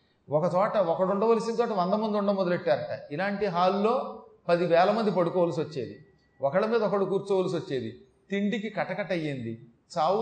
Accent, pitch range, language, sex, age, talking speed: native, 155-210 Hz, Telugu, male, 40-59, 130 wpm